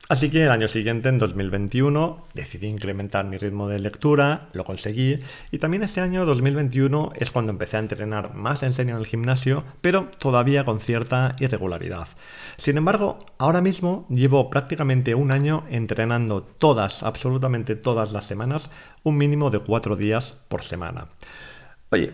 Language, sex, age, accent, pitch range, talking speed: Spanish, male, 40-59, Spanish, 110-145 Hz, 155 wpm